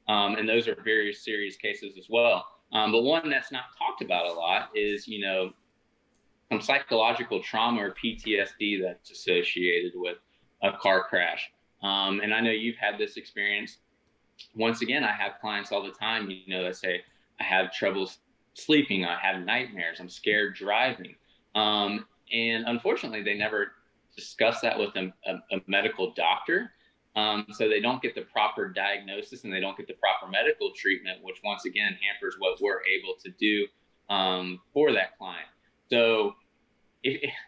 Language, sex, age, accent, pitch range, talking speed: English, male, 20-39, American, 100-150 Hz, 170 wpm